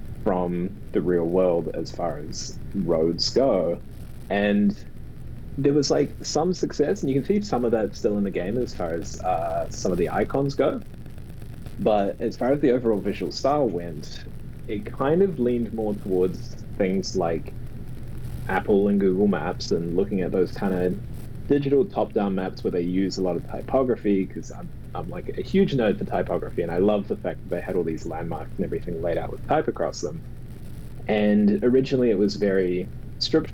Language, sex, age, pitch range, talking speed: English, male, 20-39, 100-130 Hz, 190 wpm